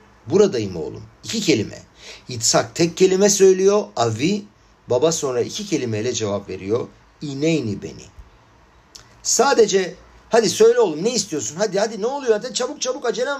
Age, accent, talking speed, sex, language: 50-69, native, 140 wpm, male, Turkish